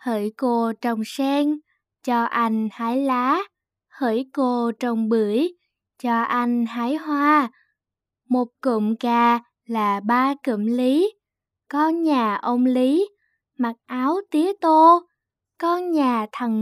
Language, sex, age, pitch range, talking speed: Vietnamese, female, 10-29, 235-300 Hz, 125 wpm